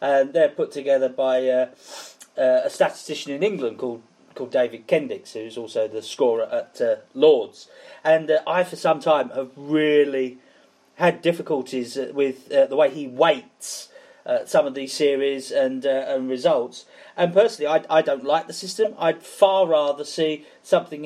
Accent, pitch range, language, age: British, 150-250 Hz, English, 40-59